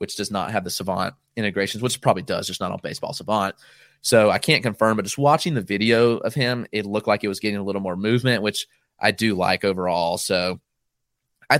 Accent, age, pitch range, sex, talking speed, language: American, 30-49, 105-130 Hz, male, 230 wpm, English